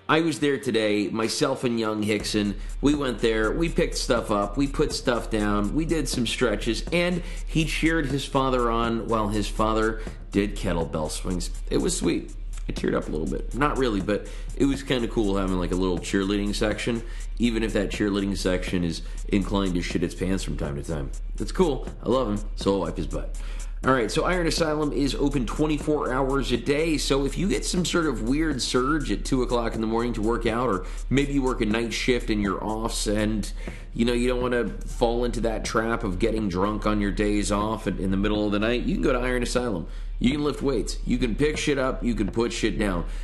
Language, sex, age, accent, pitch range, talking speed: English, male, 30-49, American, 100-125 Hz, 230 wpm